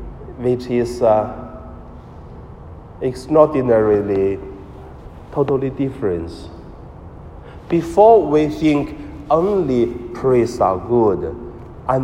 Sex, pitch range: male, 90-130 Hz